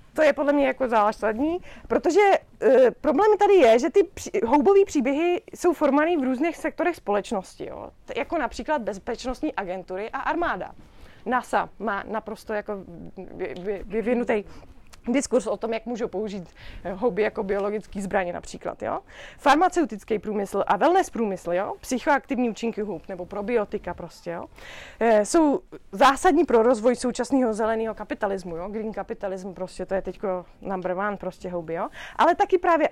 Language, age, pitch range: Czech, 20-39, 210-285 Hz